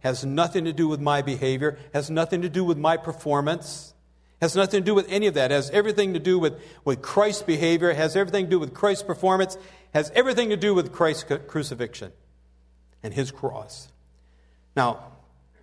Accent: American